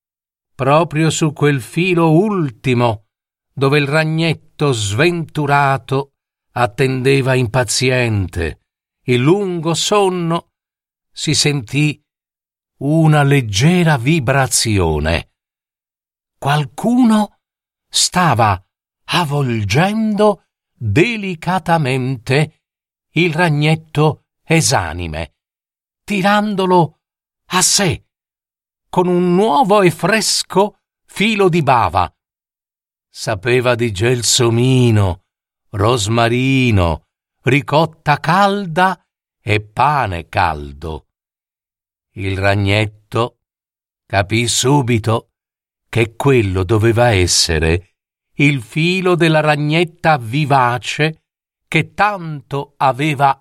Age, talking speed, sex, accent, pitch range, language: 50-69, 70 wpm, male, native, 115-165 Hz, Italian